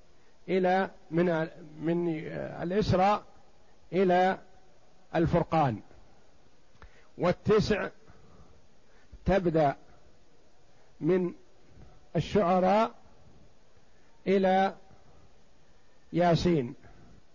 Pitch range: 150-190 Hz